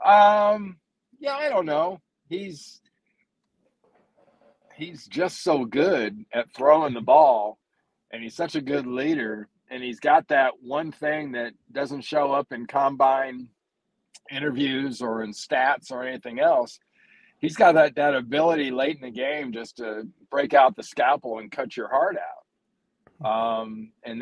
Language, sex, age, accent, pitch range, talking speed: English, male, 50-69, American, 135-180 Hz, 150 wpm